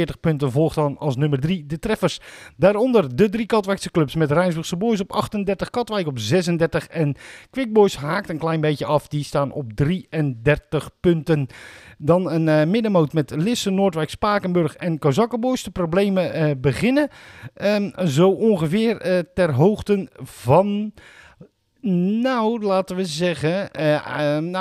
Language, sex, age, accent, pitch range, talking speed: Dutch, male, 50-69, Dutch, 150-200 Hz, 145 wpm